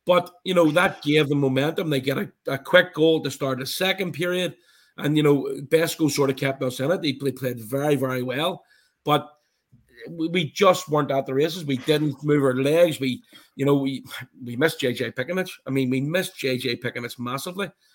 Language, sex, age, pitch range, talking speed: English, male, 30-49, 130-165 Hz, 200 wpm